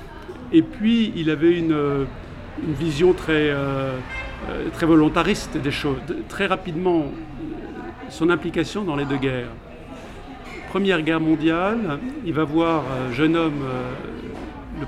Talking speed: 130 wpm